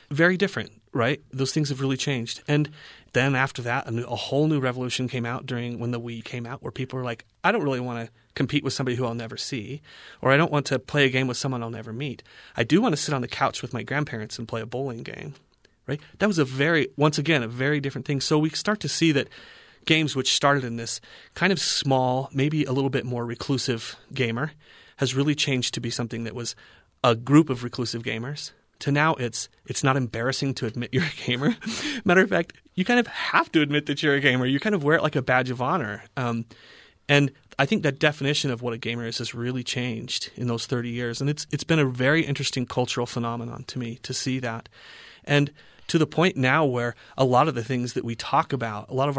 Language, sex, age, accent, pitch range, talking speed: English, male, 30-49, American, 120-145 Hz, 245 wpm